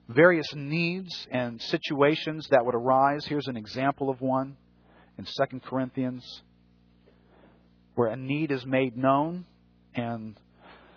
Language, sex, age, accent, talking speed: English, male, 40-59, American, 120 wpm